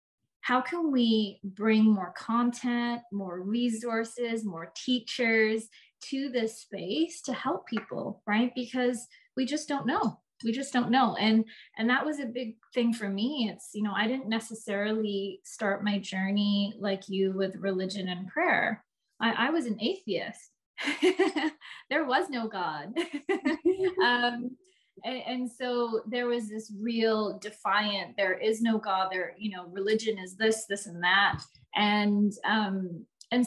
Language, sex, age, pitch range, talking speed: English, female, 20-39, 195-245 Hz, 150 wpm